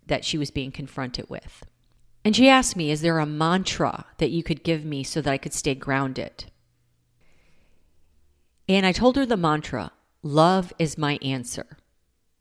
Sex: female